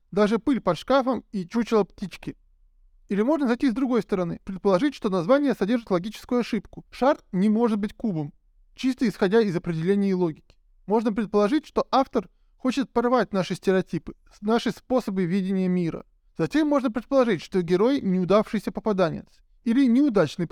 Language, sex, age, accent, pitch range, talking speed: Russian, male, 20-39, native, 190-250 Hz, 150 wpm